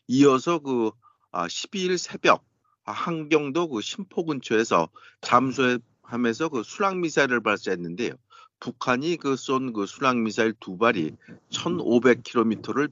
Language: Korean